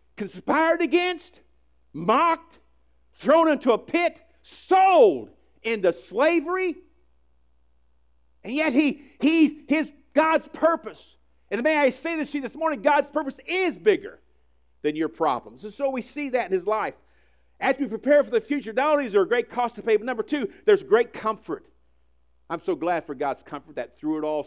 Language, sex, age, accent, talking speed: English, male, 50-69, American, 175 wpm